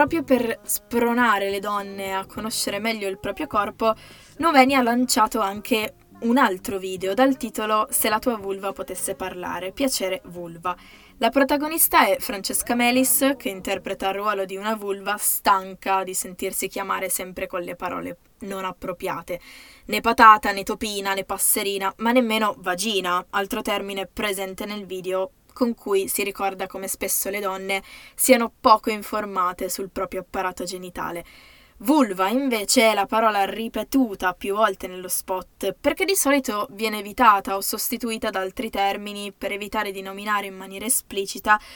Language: Italian